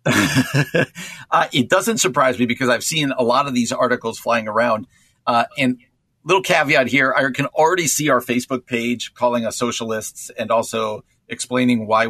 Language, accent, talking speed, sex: English, American, 170 wpm, male